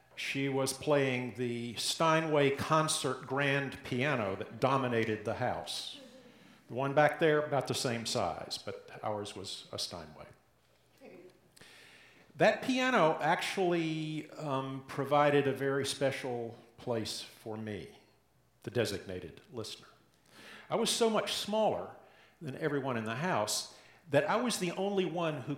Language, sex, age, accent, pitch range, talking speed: English, male, 50-69, American, 125-185 Hz, 130 wpm